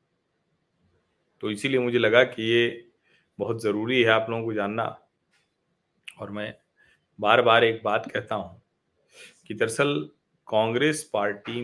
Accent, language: native, Hindi